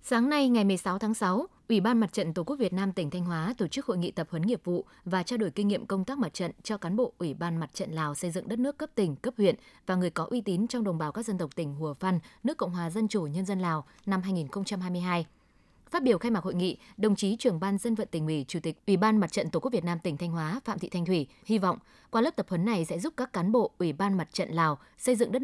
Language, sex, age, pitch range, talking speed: Vietnamese, female, 20-39, 170-225 Hz, 295 wpm